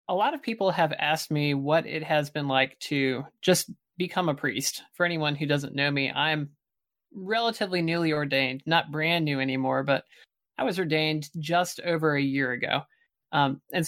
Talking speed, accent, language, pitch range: 180 wpm, American, English, 145-180 Hz